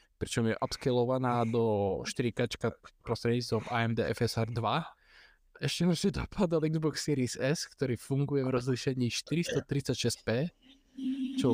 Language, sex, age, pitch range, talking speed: Slovak, male, 20-39, 115-140 Hz, 115 wpm